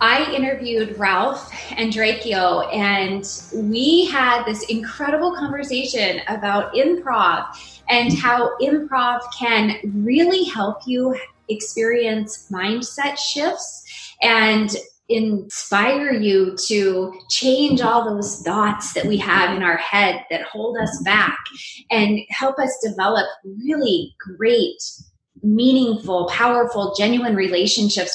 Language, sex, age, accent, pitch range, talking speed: English, female, 20-39, American, 190-250 Hz, 110 wpm